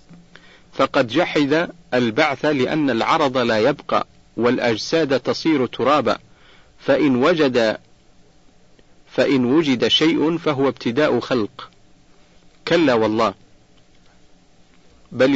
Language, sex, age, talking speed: Arabic, male, 50-69, 80 wpm